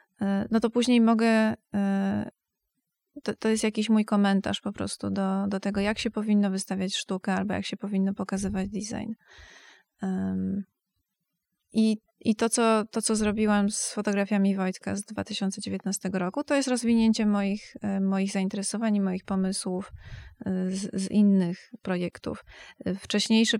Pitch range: 195-215 Hz